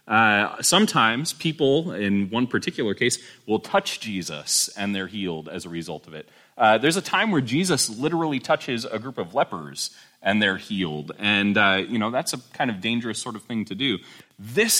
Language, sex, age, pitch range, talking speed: English, male, 30-49, 100-155 Hz, 195 wpm